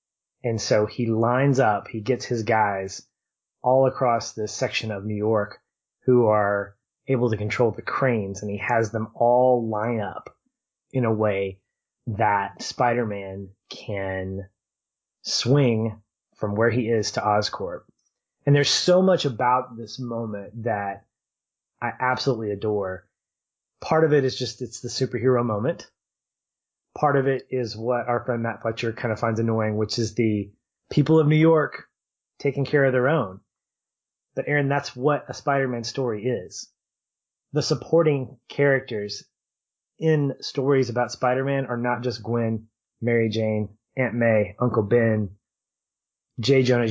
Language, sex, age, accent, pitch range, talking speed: English, male, 30-49, American, 110-130 Hz, 145 wpm